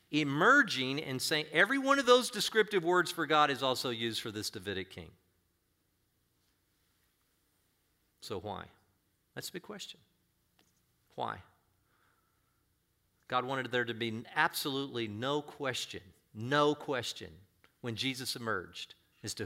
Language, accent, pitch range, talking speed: English, American, 95-140 Hz, 125 wpm